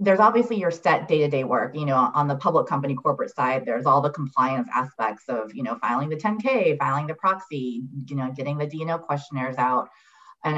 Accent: American